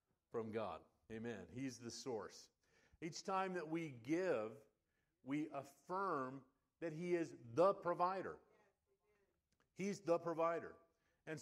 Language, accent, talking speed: English, American, 115 wpm